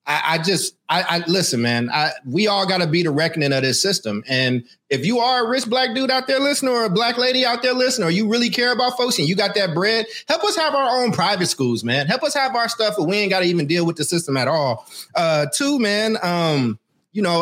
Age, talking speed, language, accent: 30-49, 270 wpm, English, American